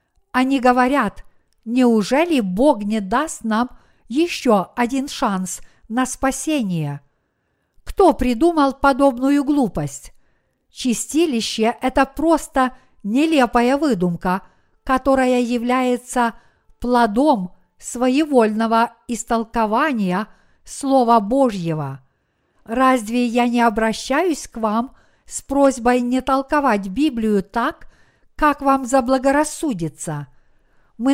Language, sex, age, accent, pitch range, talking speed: Russian, female, 50-69, native, 220-270 Hz, 85 wpm